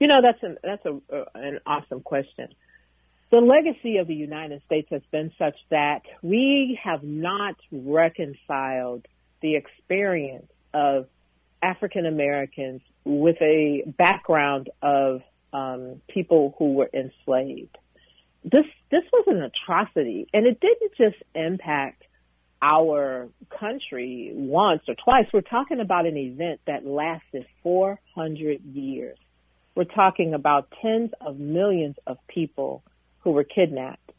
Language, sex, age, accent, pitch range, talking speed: English, female, 50-69, American, 140-200 Hz, 125 wpm